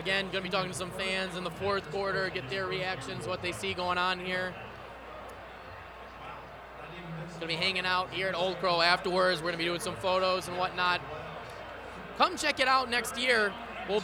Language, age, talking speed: English, 20-39, 190 wpm